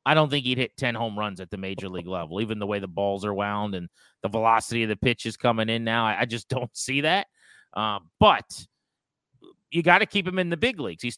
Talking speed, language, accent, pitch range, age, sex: 260 wpm, English, American, 115-145 Hz, 30-49, male